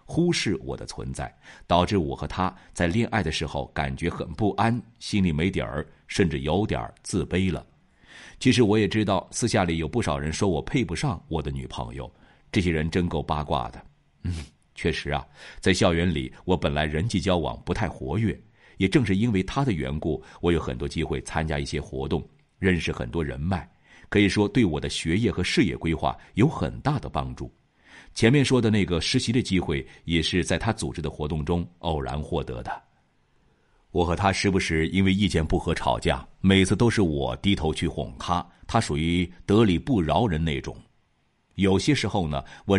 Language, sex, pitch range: Chinese, male, 75-100 Hz